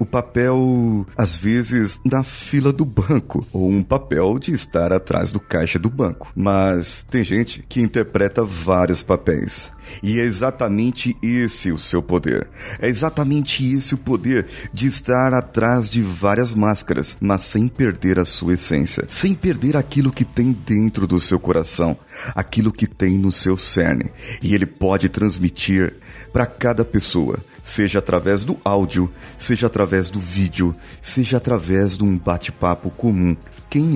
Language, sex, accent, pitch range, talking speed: Portuguese, male, Brazilian, 95-125 Hz, 150 wpm